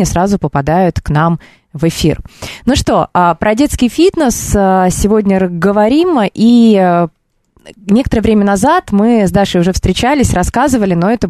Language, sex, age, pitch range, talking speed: Russian, female, 20-39, 175-215 Hz, 135 wpm